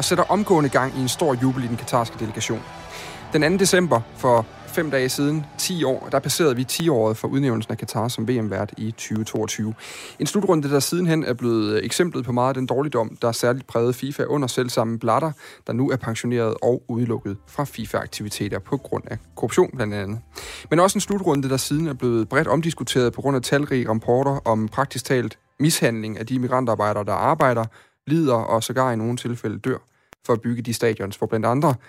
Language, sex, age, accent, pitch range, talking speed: Danish, male, 30-49, native, 115-145 Hz, 200 wpm